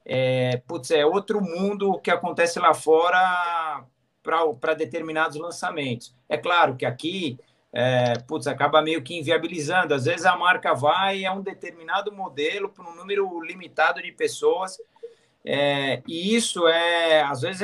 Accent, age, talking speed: Brazilian, 50-69, 130 wpm